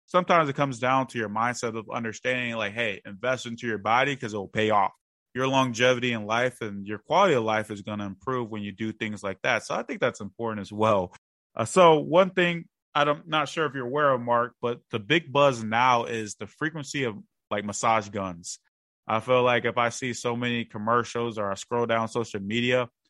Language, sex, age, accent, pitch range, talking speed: English, male, 20-39, American, 110-130 Hz, 220 wpm